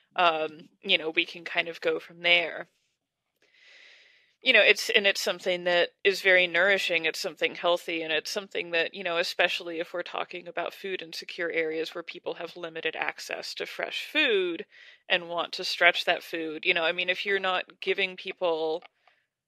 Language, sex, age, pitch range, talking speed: English, female, 30-49, 175-225 Hz, 190 wpm